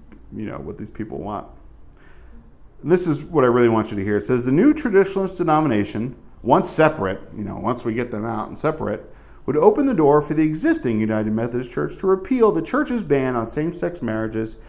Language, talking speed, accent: English, 210 wpm, American